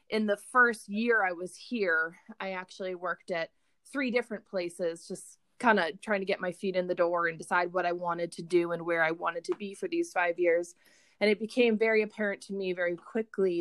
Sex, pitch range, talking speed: female, 180-215 Hz, 225 wpm